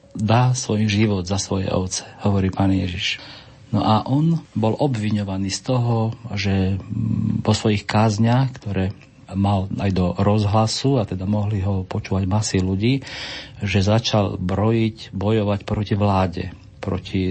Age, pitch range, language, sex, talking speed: 40-59, 95-115 Hz, Slovak, male, 135 wpm